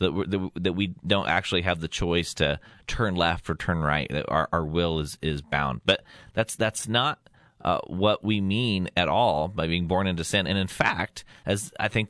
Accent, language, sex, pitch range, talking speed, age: American, English, male, 90-115 Hz, 205 wpm, 30-49